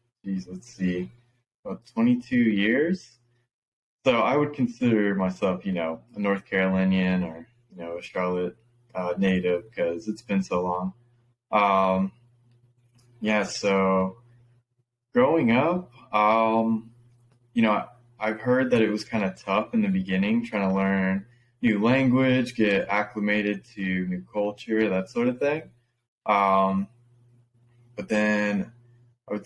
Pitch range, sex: 95-120 Hz, male